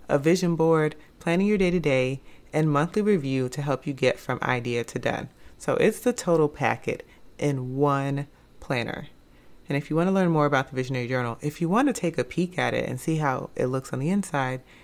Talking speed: 215 wpm